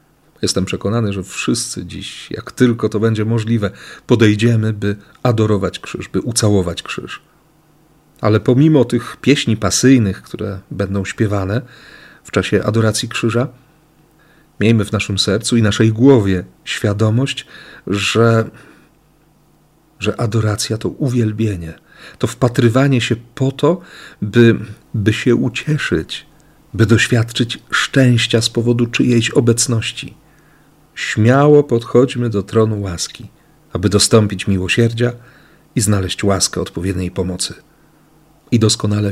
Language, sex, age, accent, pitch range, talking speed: Polish, male, 40-59, native, 105-135 Hz, 110 wpm